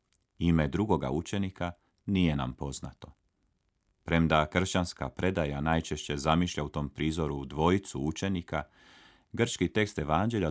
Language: Croatian